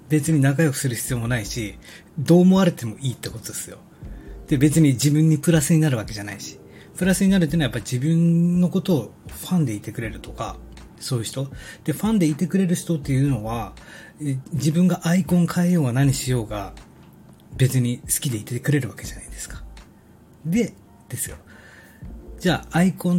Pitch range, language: 110-155 Hz, Japanese